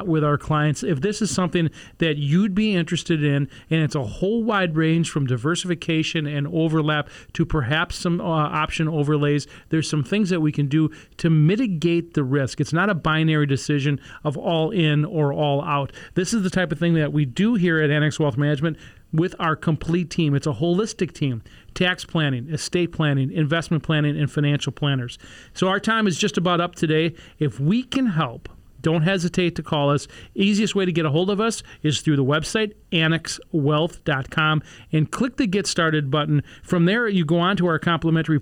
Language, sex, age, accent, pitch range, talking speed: English, male, 40-59, American, 145-180 Hz, 195 wpm